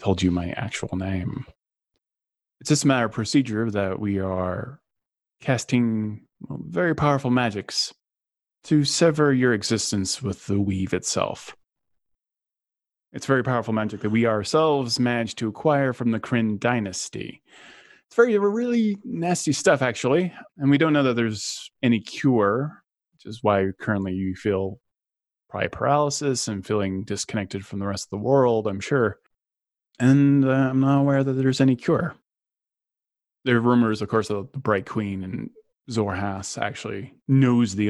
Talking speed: 150 wpm